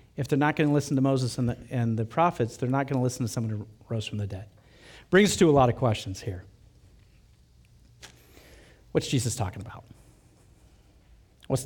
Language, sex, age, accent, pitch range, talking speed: English, male, 50-69, American, 125-185 Hz, 195 wpm